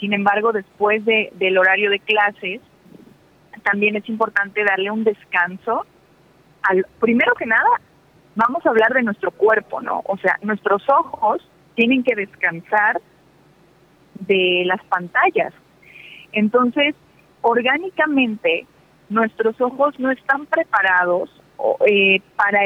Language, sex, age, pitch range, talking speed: Spanish, female, 30-49, 190-225 Hz, 115 wpm